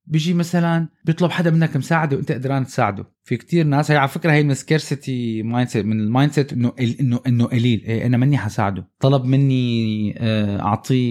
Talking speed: 160 wpm